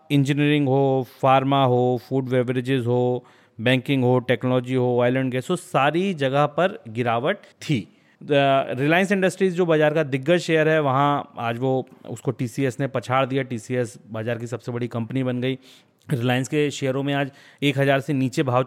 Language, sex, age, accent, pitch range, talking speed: Hindi, male, 30-49, native, 125-155 Hz, 165 wpm